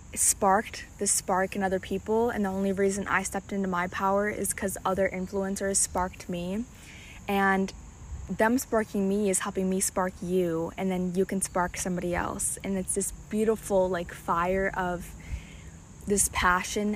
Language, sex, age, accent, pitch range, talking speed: English, female, 20-39, American, 180-195 Hz, 165 wpm